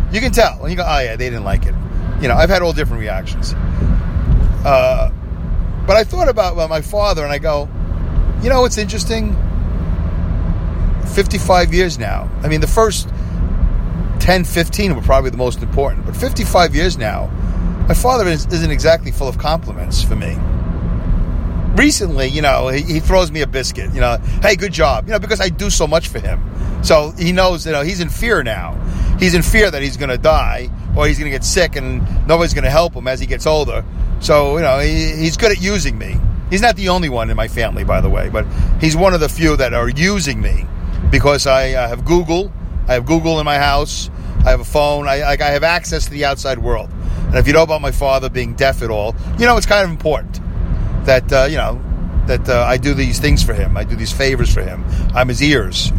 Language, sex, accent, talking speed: English, male, American, 225 wpm